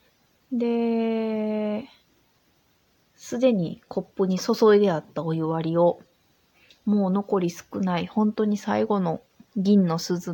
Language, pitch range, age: Japanese, 170-235 Hz, 20-39